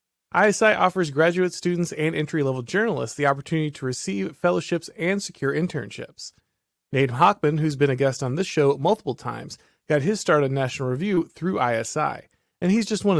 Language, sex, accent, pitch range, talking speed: English, male, American, 135-180 Hz, 175 wpm